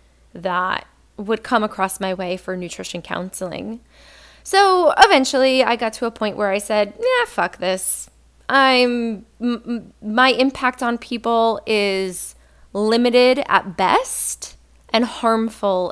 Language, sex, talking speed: English, female, 125 wpm